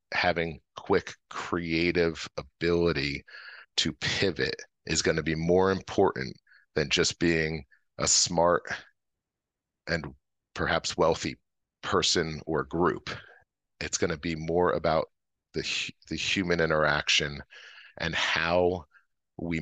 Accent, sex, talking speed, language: American, male, 110 wpm, English